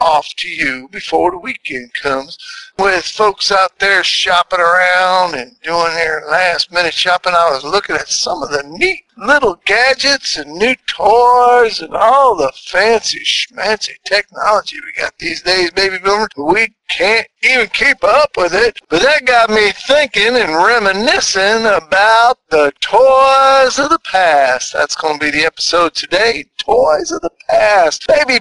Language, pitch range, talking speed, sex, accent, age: English, 175-275 Hz, 160 wpm, male, American, 50-69